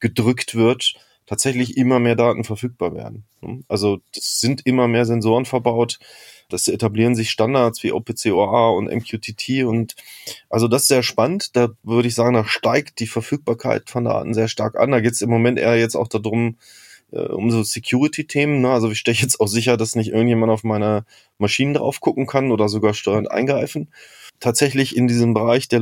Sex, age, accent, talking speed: male, 20-39, German, 185 wpm